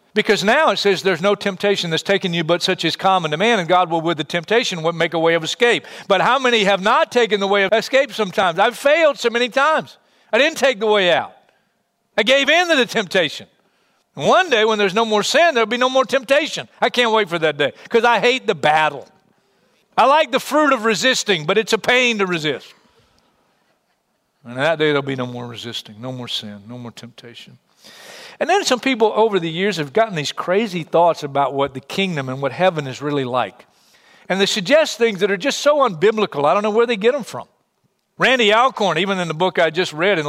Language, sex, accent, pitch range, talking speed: English, male, American, 160-235 Hz, 230 wpm